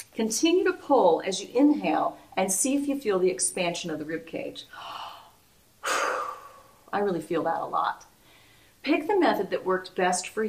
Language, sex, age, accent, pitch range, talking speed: English, female, 40-59, American, 175-245 Hz, 170 wpm